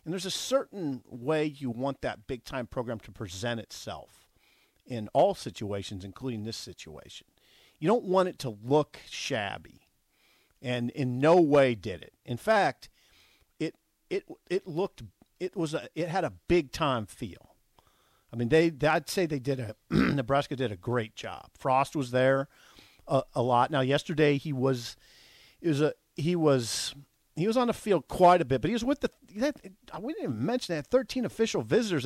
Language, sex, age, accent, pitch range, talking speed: English, male, 50-69, American, 115-165 Hz, 185 wpm